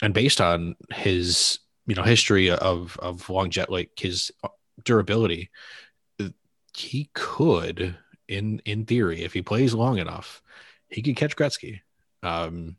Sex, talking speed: male, 135 wpm